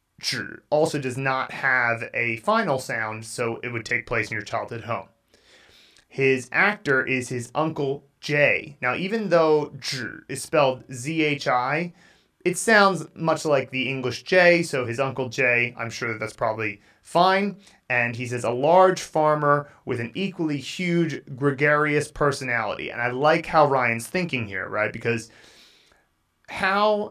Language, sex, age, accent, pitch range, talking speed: English, male, 30-49, American, 120-150 Hz, 145 wpm